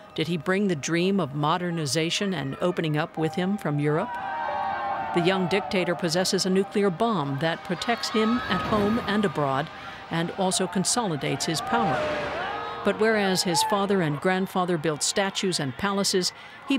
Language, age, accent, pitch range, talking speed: English, 60-79, American, 155-200 Hz, 155 wpm